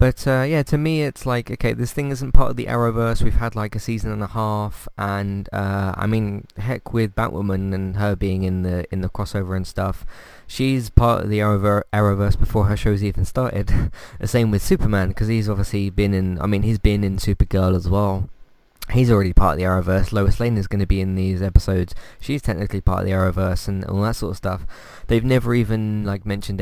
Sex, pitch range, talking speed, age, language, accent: male, 95-115 Hz, 220 wpm, 20-39, English, British